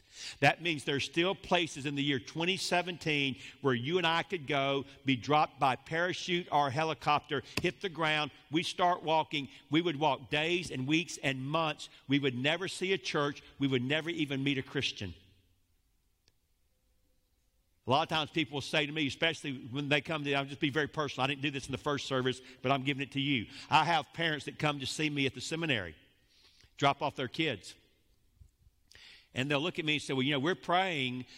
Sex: male